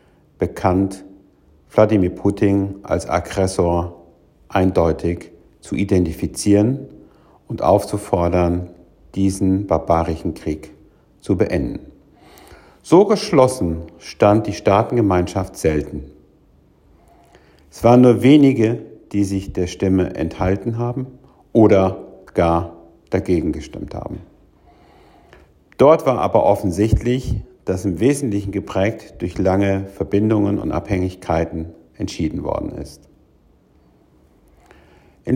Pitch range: 85-110 Hz